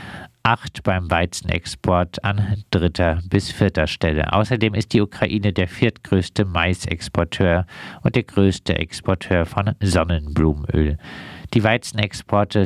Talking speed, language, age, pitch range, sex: 110 wpm, German, 50-69, 85-105 Hz, male